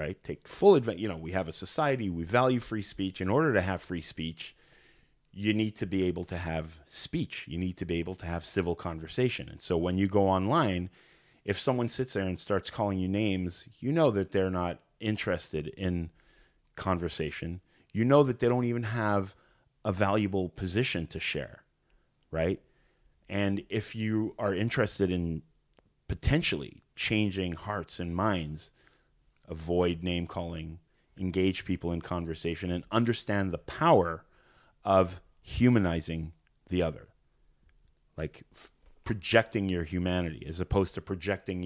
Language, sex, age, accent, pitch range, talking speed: English, male, 30-49, American, 85-105 Hz, 155 wpm